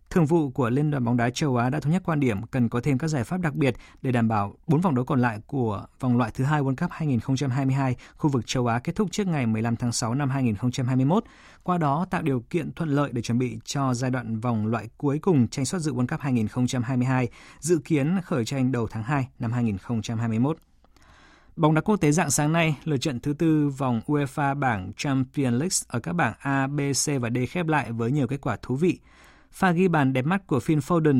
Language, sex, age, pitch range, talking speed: Vietnamese, male, 20-39, 120-155 Hz, 235 wpm